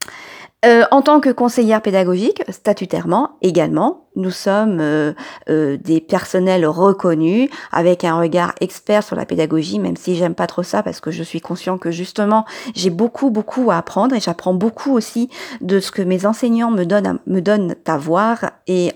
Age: 40-59